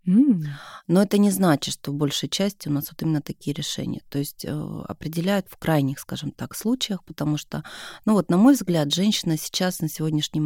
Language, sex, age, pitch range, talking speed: Russian, female, 30-49, 150-185 Hz, 190 wpm